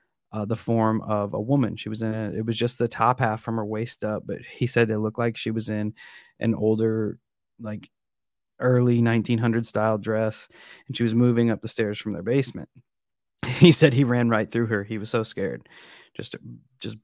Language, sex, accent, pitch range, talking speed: English, male, American, 110-120 Hz, 210 wpm